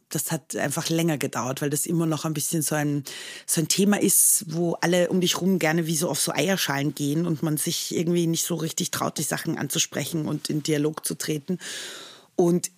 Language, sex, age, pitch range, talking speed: German, female, 30-49, 155-175 Hz, 215 wpm